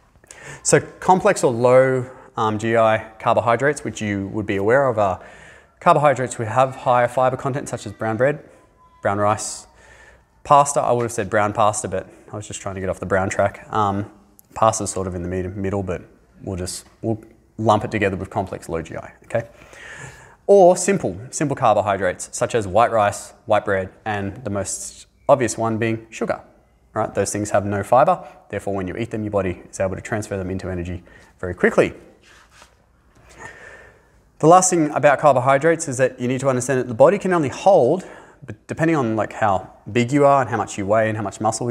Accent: Australian